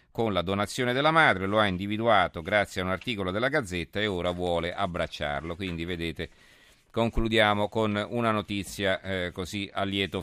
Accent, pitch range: native, 90-105 Hz